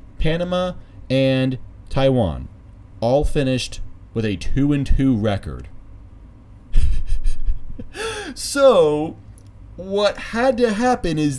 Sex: male